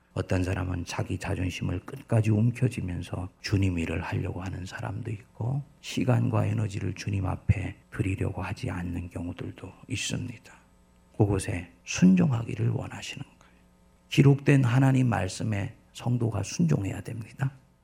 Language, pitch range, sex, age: Korean, 95-135 Hz, male, 50-69